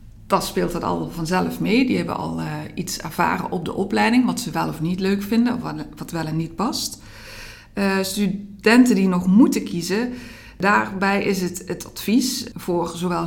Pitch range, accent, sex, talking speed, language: 165-220 Hz, Dutch, female, 190 wpm, Dutch